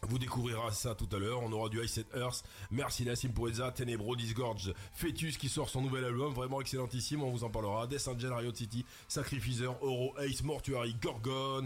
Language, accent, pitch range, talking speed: French, French, 105-130 Hz, 195 wpm